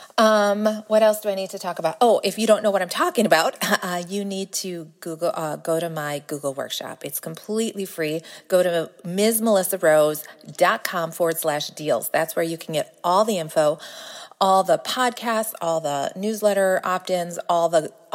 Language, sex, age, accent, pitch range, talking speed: English, female, 40-59, American, 165-210 Hz, 190 wpm